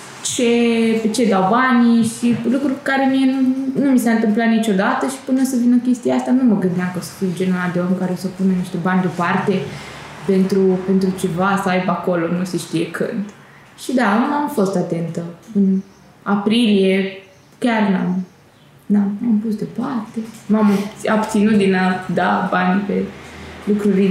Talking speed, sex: 170 wpm, female